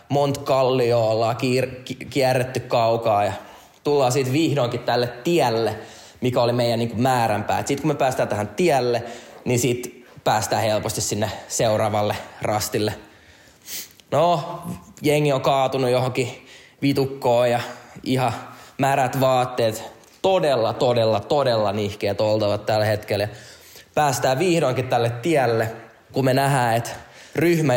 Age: 20-39